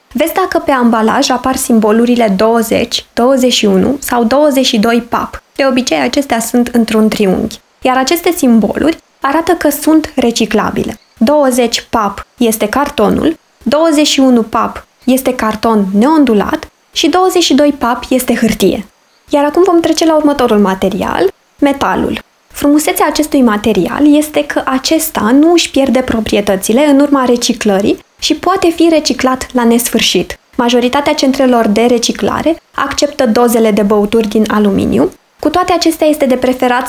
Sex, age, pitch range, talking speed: female, 20-39, 230-290 Hz, 130 wpm